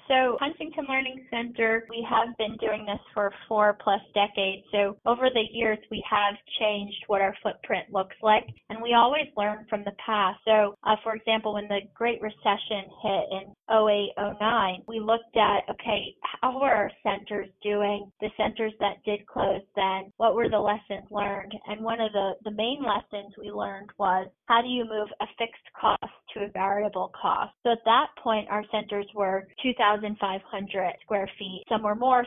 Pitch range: 200-225 Hz